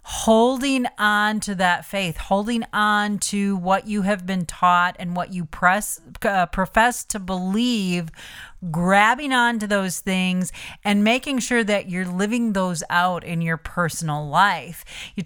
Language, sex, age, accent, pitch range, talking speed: English, female, 40-59, American, 180-220 Hz, 155 wpm